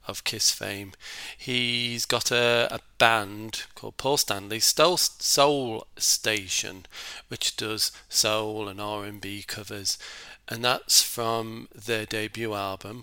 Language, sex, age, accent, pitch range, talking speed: English, male, 40-59, British, 100-120 Hz, 115 wpm